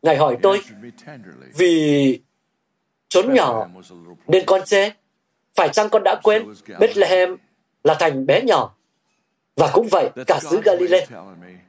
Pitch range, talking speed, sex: 160-215 Hz, 130 wpm, male